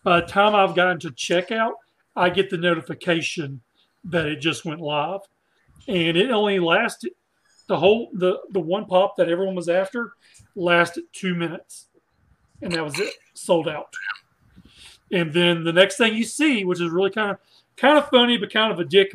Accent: American